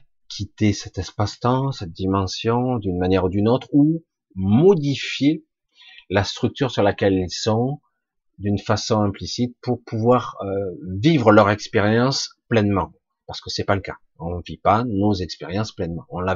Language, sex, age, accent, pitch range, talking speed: French, male, 40-59, French, 95-135 Hz, 160 wpm